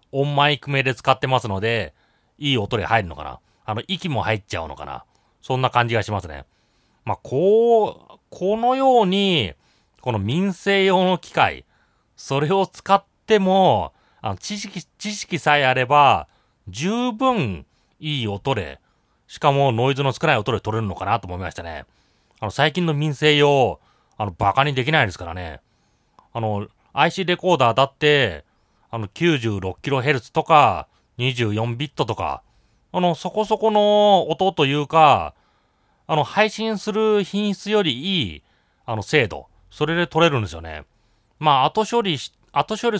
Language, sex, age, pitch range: Japanese, male, 30-49, 110-165 Hz